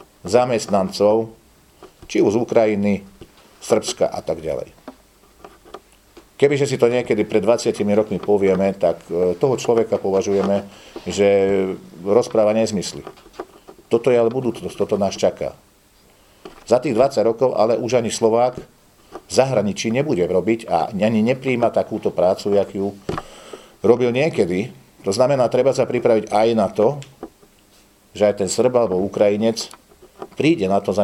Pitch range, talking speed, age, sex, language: 100-115 Hz, 135 wpm, 50-69, male, Slovak